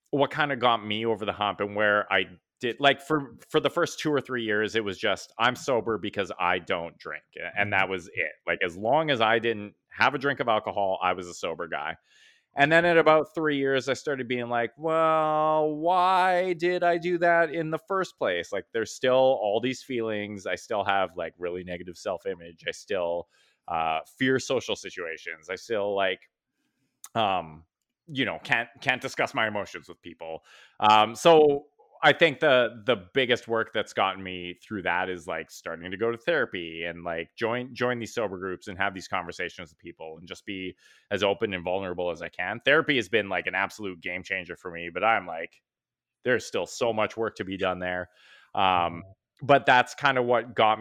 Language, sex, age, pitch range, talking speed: English, male, 30-49, 95-140 Hz, 205 wpm